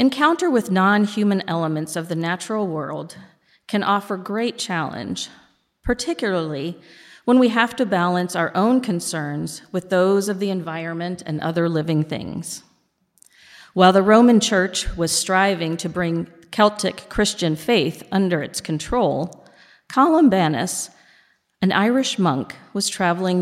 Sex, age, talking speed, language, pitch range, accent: female, 40-59, 130 wpm, English, 170-220 Hz, American